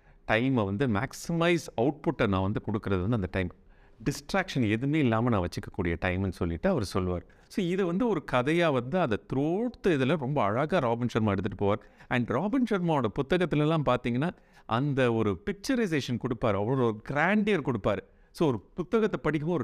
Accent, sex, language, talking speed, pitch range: Indian, male, English, 110 wpm, 105-165 Hz